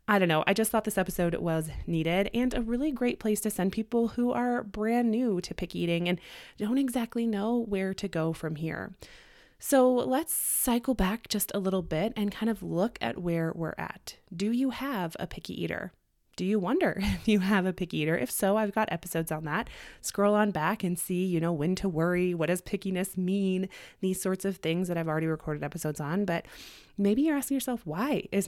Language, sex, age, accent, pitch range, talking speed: English, female, 20-39, American, 180-235 Hz, 215 wpm